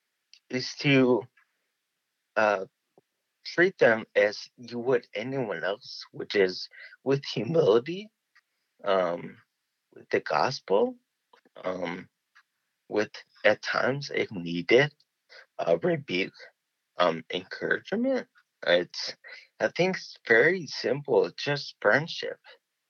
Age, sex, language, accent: 30-49, male, English, American